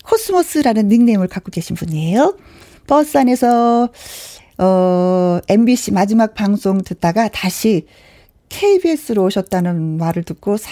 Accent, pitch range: native, 180-250 Hz